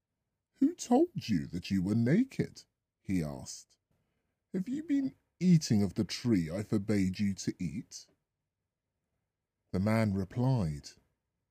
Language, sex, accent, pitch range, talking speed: English, female, British, 105-155 Hz, 125 wpm